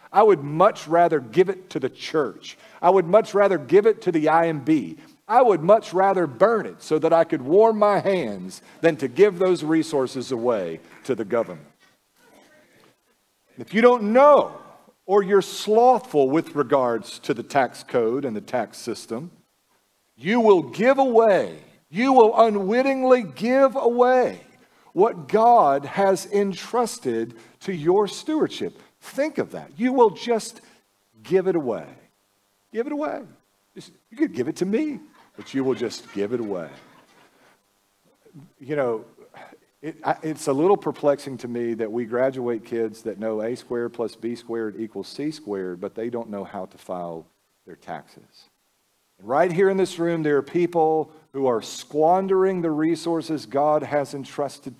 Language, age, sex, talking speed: English, 50-69, male, 160 wpm